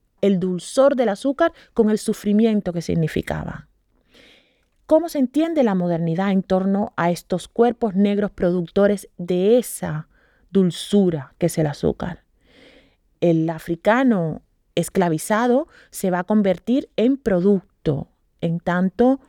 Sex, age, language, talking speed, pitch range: female, 30-49, English, 120 wpm, 175-245 Hz